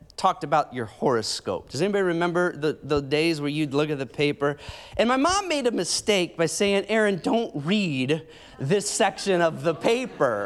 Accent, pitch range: American, 150-200 Hz